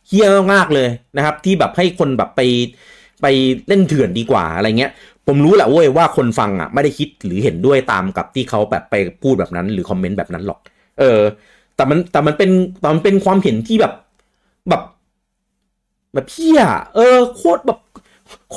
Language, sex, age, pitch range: Thai, male, 30-49, 135-200 Hz